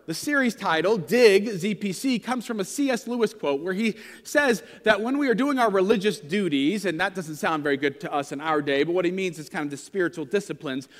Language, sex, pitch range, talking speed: English, male, 170-250 Hz, 235 wpm